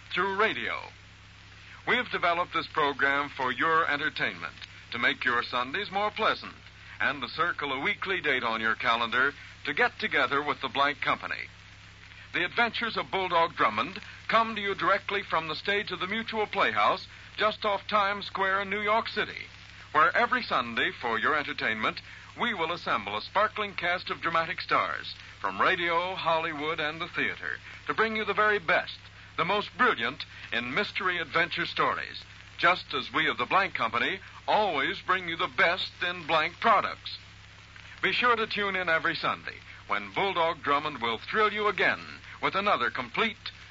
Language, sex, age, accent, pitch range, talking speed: English, male, 60-79, American, 135-205 Hz, 170 wpm